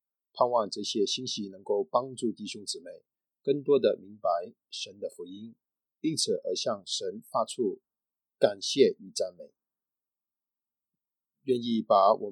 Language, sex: Chinese, male